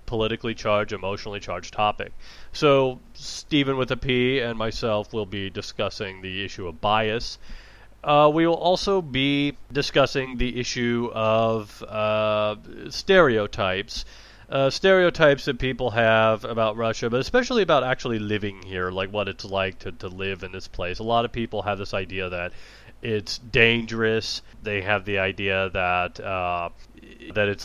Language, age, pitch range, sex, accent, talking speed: English, 30-49, 105-130 Hz, male, American, 155 wpm